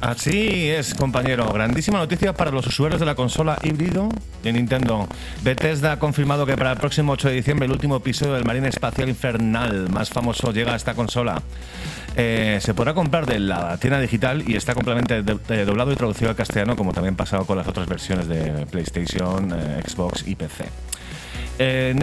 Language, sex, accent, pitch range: Spanish, male, Spanish, 95-130 Hz